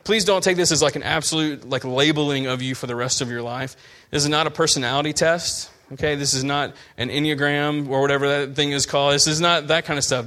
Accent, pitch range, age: American, 130-160 Hz, 30-49